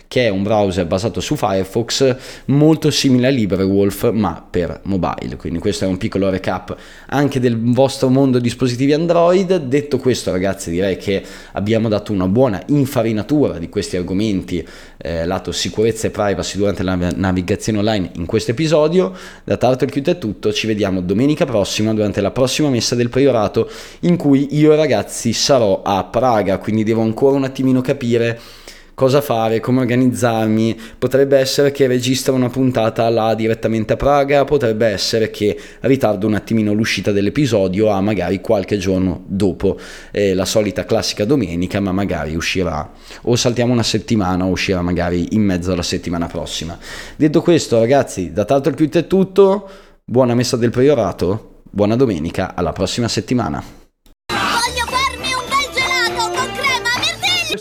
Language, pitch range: Italian, 95-135 Hz